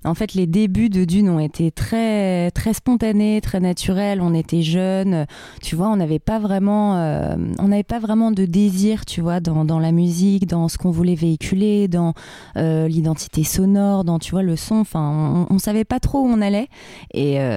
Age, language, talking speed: 20-39, French, 200 wpm